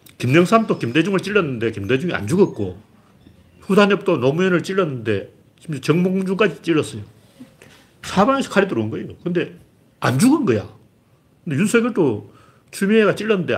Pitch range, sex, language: 115-185 Hz, male, Korean